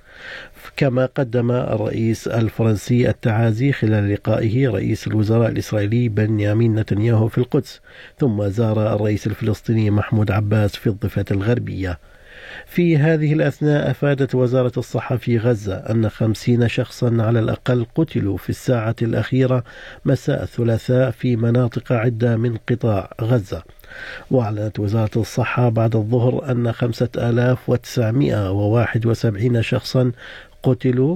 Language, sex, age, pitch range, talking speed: Arabic, male, 50-69, 110-125 Hz, 110 wpm